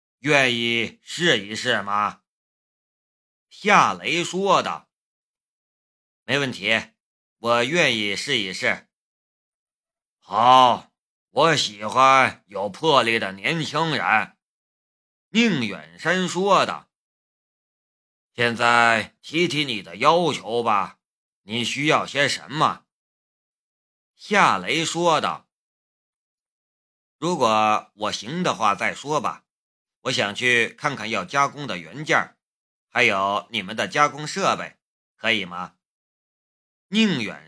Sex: male